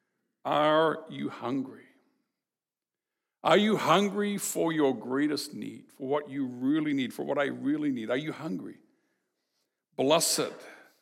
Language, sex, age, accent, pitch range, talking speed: English, male, 60-79, American, 155-240 Hz, 130 wpm